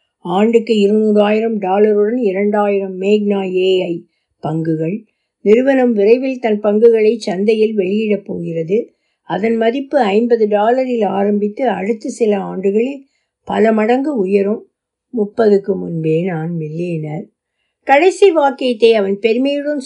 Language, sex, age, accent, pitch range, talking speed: Tamil, female, 60-79, native, 190-235 Hz, 100 wpm